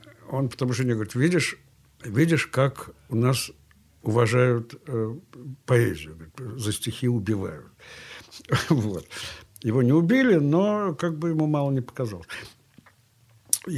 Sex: male